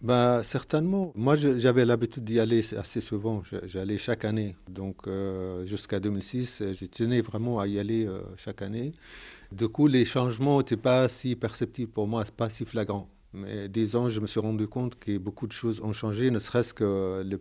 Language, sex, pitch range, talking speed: French, male, 100-120 Hz, 185 wpm